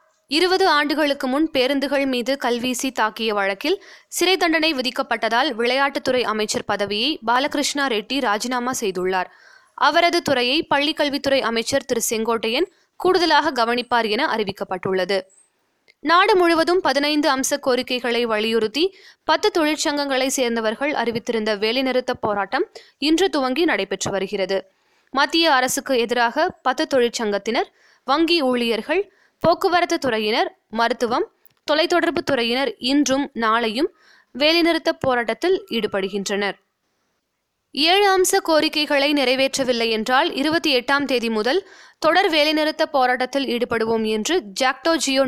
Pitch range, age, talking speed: 230-320 Hz, 20-39, 100 wpm